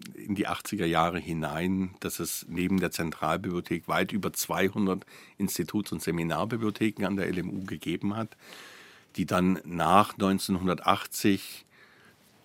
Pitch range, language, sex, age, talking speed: 85-95 Hz, German, male, 60-79, 120 wpm